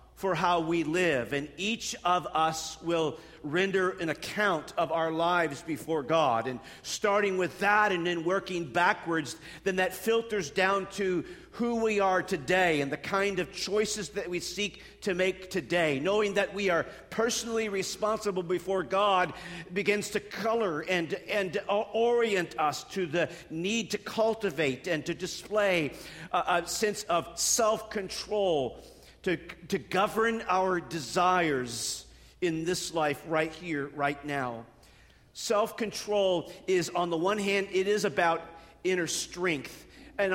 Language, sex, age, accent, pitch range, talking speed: English, male, 50-69, American, 160-200 Hz, 145 wpm